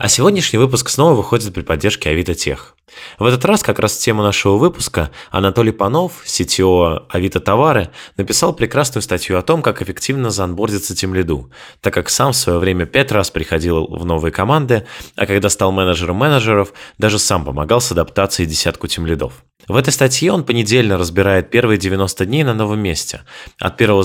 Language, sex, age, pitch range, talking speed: Russian, male, 20-39, 85-120 Hz, 175 wpm